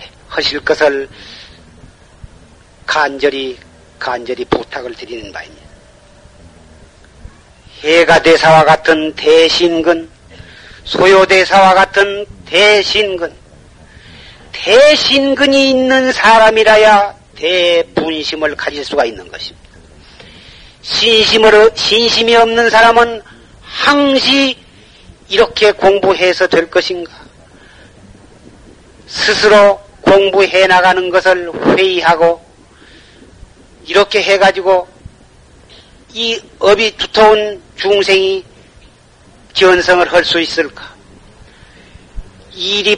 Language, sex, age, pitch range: Korean, male, 40-59, 160-210 Hz